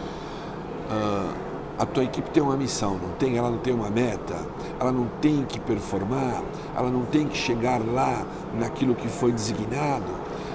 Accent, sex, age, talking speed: Brazilian, male, 60-79, 160 wpm